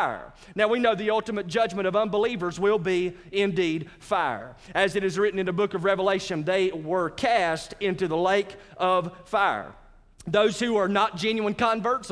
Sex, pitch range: male, 190-230 Hz